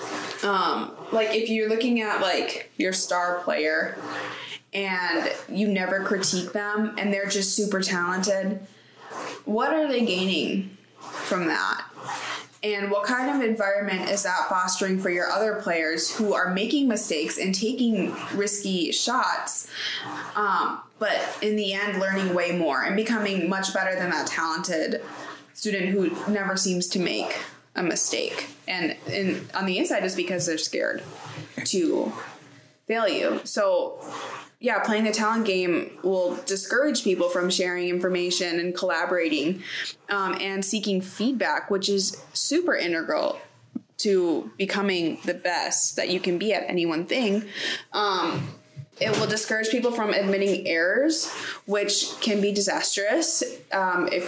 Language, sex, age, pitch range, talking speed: English, female, 20-39, 180-215 Hz, 145 wpm